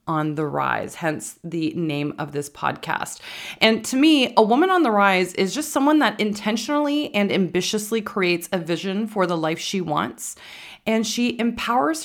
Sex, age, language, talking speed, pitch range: female, 20-39, English, 175 wpm, 170-215 Hz